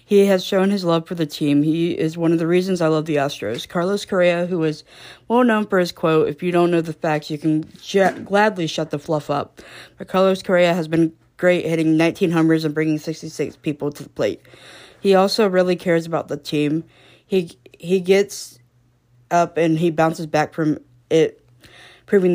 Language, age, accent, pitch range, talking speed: English, 20-39, American, 150-175 Hz, 195 wpm